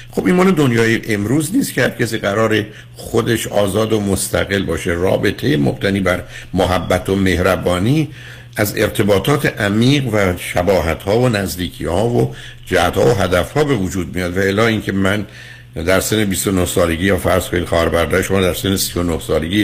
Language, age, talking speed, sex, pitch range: Persian, 60-79, 170 wpm, male, 90-115 Hz